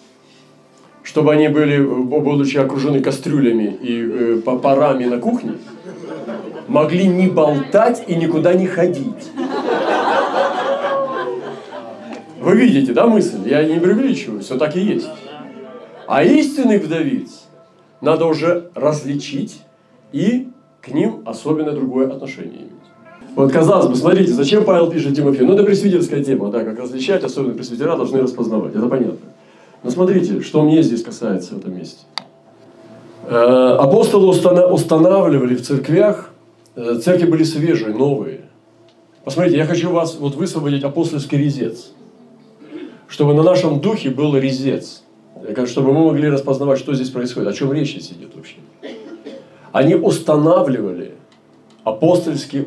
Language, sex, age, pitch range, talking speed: Russian, male, 40-59, 130-175 Hz, 125 wpm